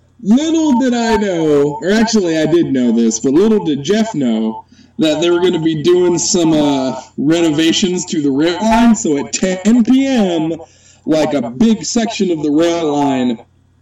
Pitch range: 130-185 Hz